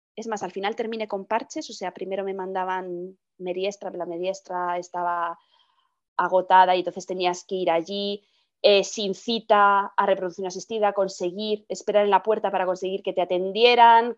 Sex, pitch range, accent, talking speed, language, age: female, 185-260 Hz, Spanish, 165 wpm, Spanish, 20-39